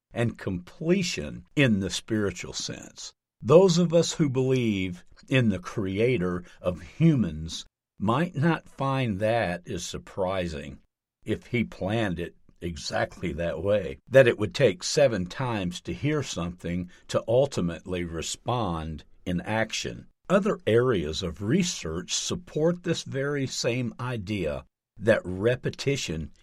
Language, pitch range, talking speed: English, 90-135 Hz, 125 wpm